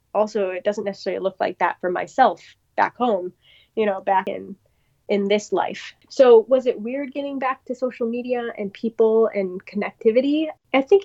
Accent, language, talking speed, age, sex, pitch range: American, English, 180 wpm, 10-29, female, 185-230 Hz